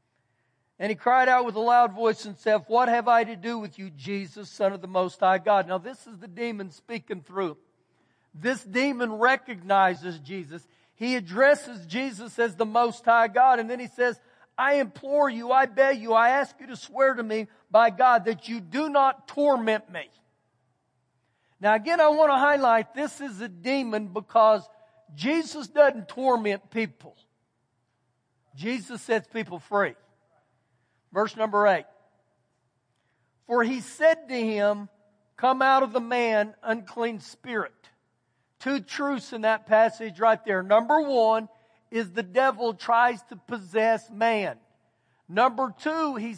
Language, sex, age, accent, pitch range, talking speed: English, male, 50-69, American, 195-255 Hz, 155 wpm